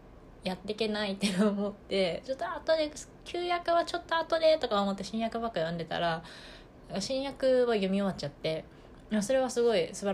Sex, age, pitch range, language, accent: female, 20-39, 170-210 Hz, Japanese, native